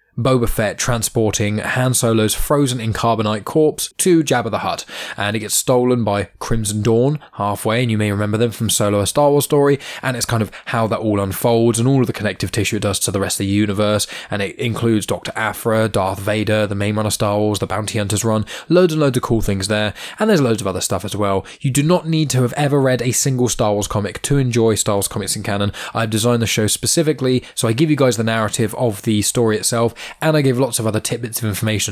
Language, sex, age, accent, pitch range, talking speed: English, male, 10-29, British, 105-130 Hz, 245 wpm